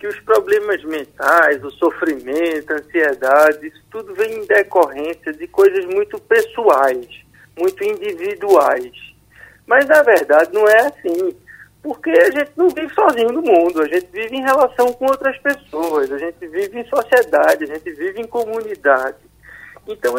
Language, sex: Portuguese, male